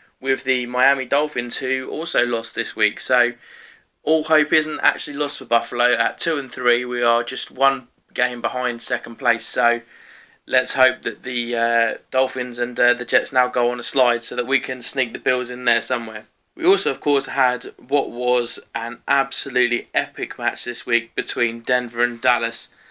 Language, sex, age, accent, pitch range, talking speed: English, male, 20-39, British, 120-140 Hz, 185 wpm